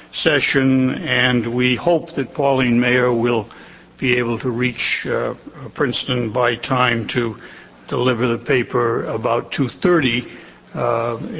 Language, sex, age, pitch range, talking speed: English, male, 60-79, 125-150 Hz, 115 wpm